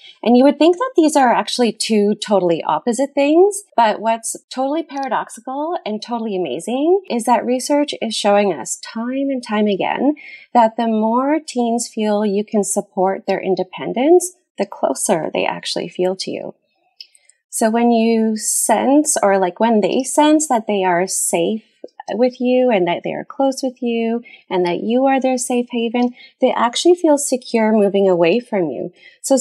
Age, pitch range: 30-49, 185-255 Hz